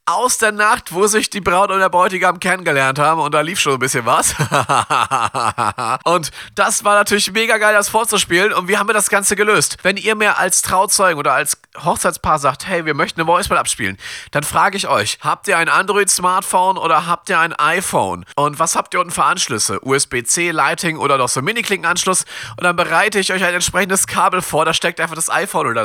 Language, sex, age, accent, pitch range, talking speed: German, male, 40-59, German, 150-195 Hz, 215 wpm